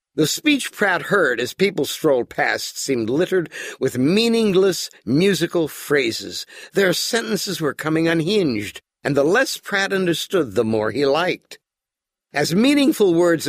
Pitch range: 145-215 Hz